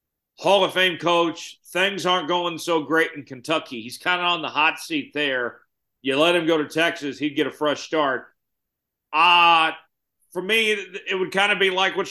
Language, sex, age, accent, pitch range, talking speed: English, male, 40-59, American, 145-175 Hz, 200 wpm